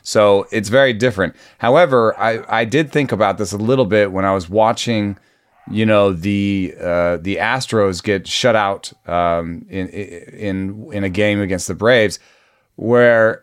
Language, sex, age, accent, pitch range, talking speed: English, male, 30-49, American, 95-120 Hz, 165 wpm